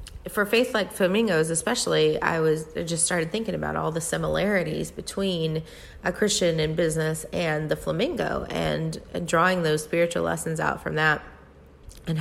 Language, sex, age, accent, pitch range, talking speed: English, female, 30-49, American, 145-190 Hz, 150 wpm